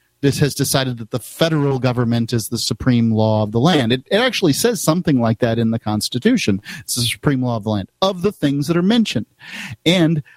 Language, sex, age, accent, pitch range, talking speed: English, male, 40-59, American, 125-170 Hz, 220 wpm